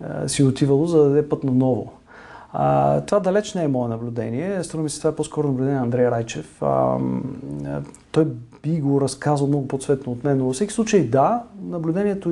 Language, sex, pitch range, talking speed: Bulgarian, male, 125-185 Hz, 190 wpm